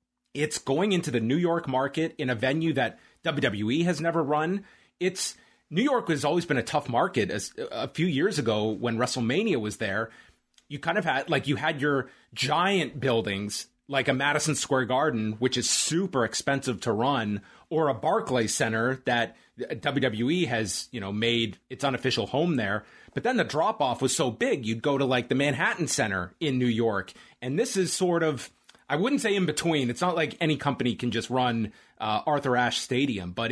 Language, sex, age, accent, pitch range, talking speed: English, male, 30-49, American, 115-150 Hz, 195 wpm